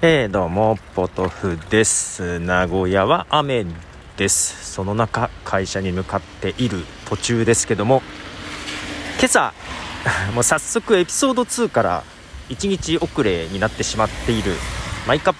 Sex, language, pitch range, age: male, Japanese, 85-125 Hz, 40-59